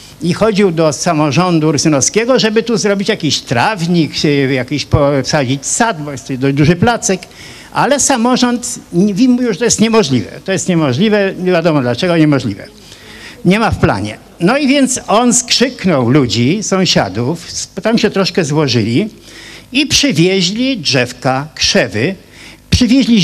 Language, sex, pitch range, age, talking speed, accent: Polish, male, 140-225 Hz, 50-69, 135 wpm, native